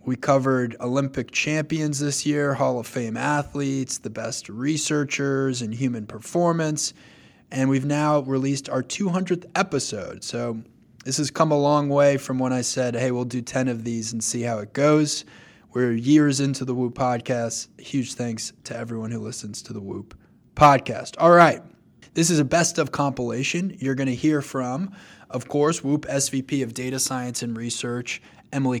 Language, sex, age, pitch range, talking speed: English, male, 20-39, 120-150 Hz, 175 wpm